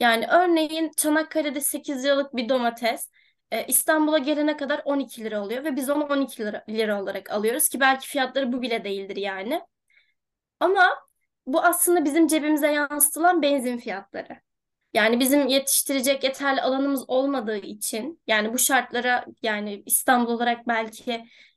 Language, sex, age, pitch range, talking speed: Turkish, female, 20-39, 240-300 Hz, 135 wpm